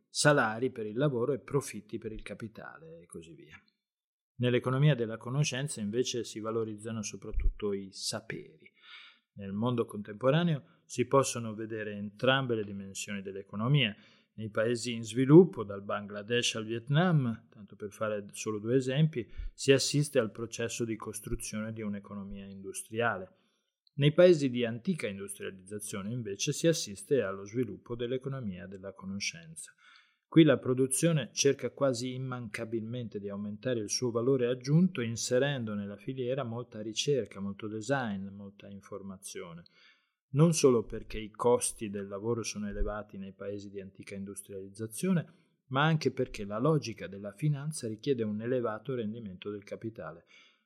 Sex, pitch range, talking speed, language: male, 105-130 Hz, 135 wpm, Italian